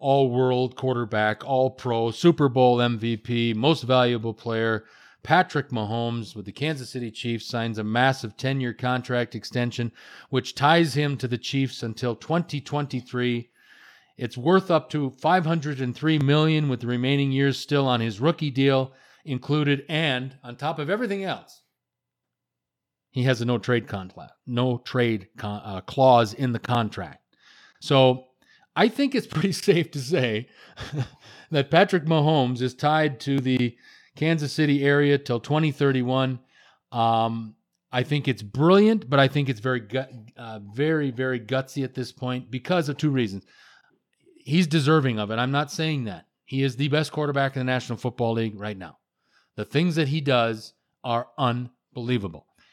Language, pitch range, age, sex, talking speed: English, 120-145 Hz, 40-59, male, 150 wpm